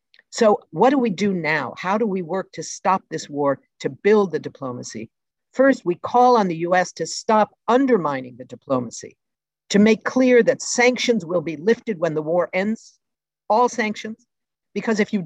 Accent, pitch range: American, 165-220 Hz